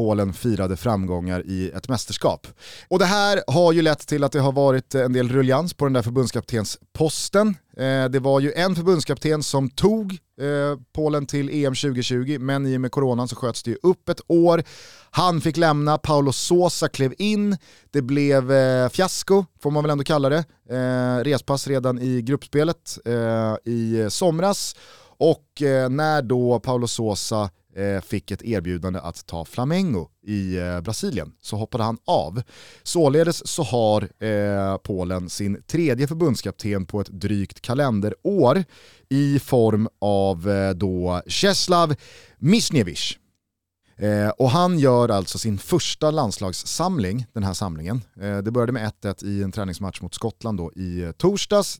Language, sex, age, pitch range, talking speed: Swedish, male, 30-49, 100-150 Hz, 145 wpm